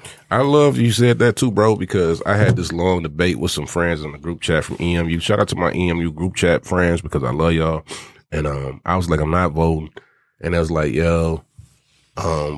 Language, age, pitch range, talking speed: English, 30-49, 80-100 Hz, 230 wpm